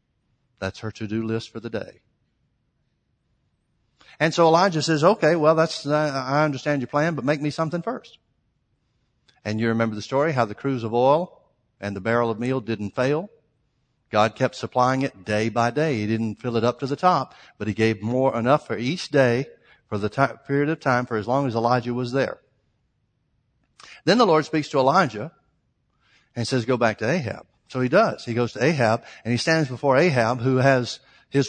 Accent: American